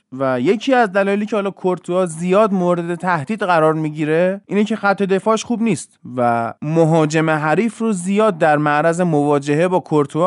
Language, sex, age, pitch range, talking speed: Persian, male, 20-39, 140-180 Hz, 165 wpm